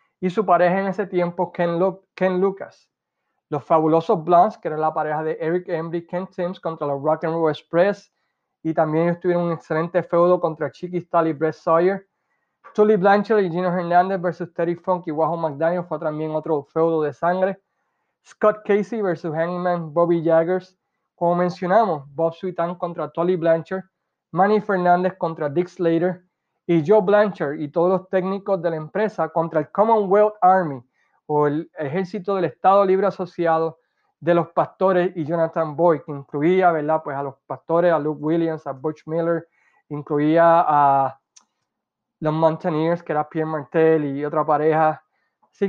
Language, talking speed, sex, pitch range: Spanish, 170 wpm, male, 160-190 Hz